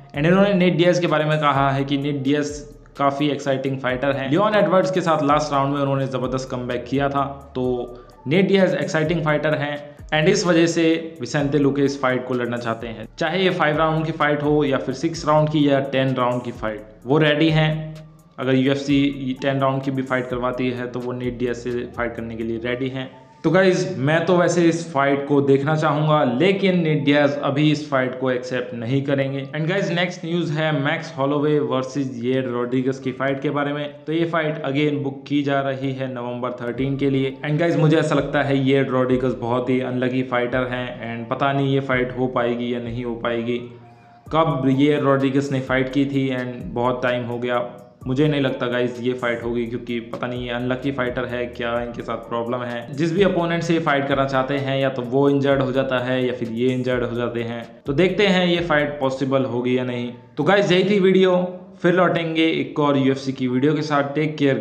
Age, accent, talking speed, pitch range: 20-39, native, 220 wpm, 125-150 Hz